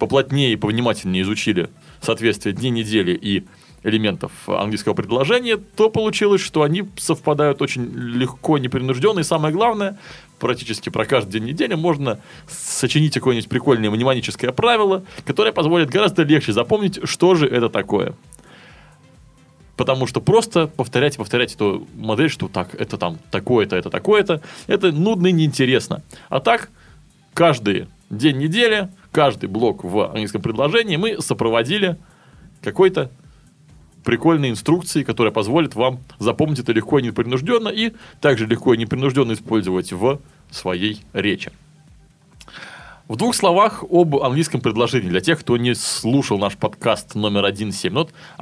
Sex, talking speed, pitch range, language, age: male, 135 wpm, 115-170 Hz, Russian, 20-39